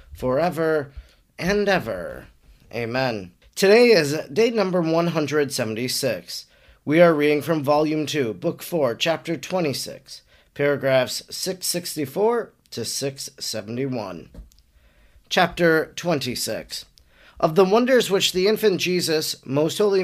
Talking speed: 100 wpm